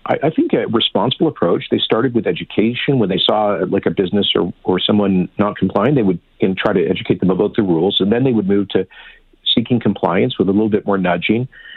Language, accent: English, American